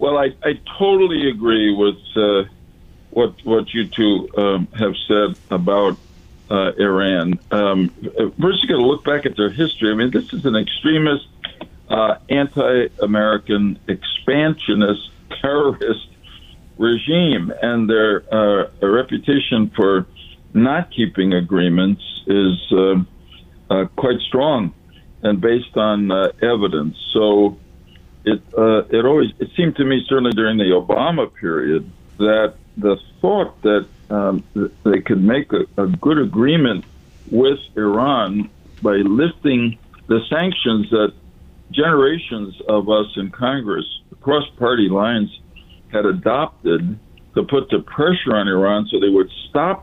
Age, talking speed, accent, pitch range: 60-79, 130 wpm, American, 95-125 Hz